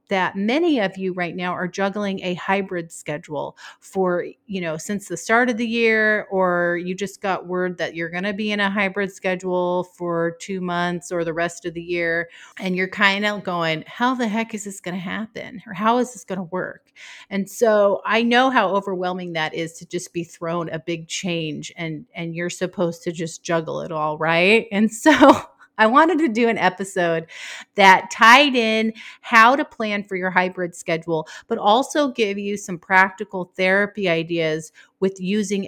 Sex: female